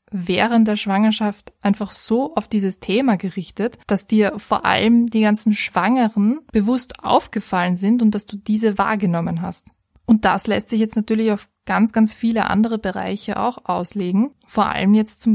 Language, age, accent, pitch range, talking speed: German, 20-39, German, 200-225 Hz, 170 wpm